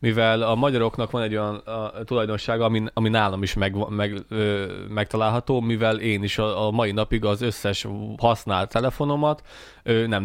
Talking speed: 165 wpm